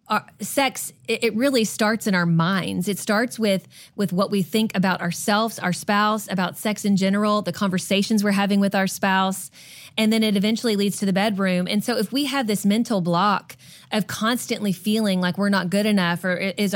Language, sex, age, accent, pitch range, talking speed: English, female, 20-39, American, 185-220 Hz, 200 wpm